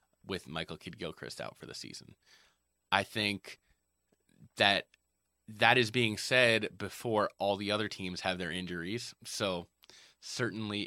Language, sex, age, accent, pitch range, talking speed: English, male, 20-39, American, 80-115 Hz, 135 wpm